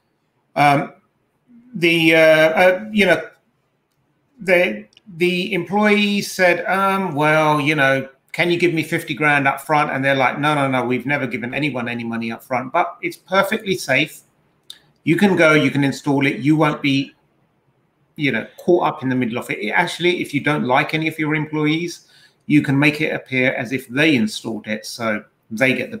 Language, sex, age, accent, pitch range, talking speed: English, male, 30-49, British, 125-165 Hz, 190 wpm